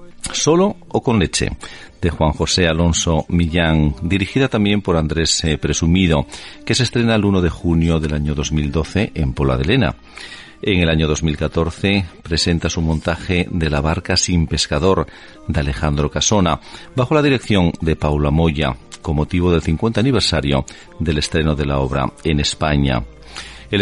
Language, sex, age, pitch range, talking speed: Spanish, male, 50-69, 75-95 Hz, 155 wpm